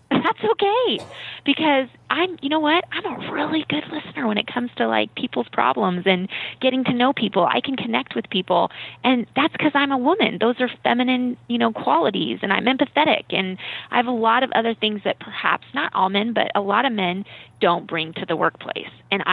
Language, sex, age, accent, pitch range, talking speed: English, female, 20-39, American, 180-245 Hz, 210 wpm